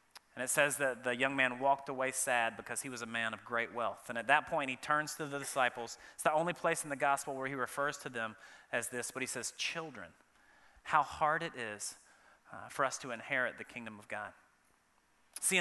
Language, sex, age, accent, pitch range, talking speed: English, male, 30-49, American, 135-160 Hz, 225 wpm